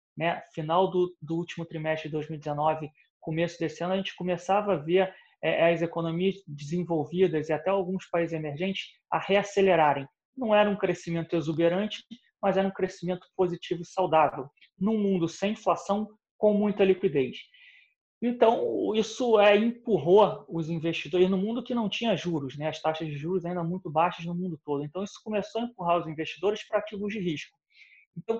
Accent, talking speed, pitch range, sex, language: Brazilian, 170 wpm, 165-200 Hz, male, Portuguese